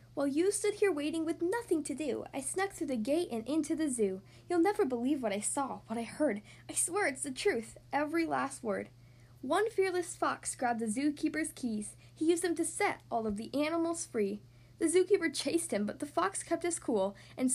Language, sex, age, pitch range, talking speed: English, female, 10-29, 220-355 Hz, 215 wpm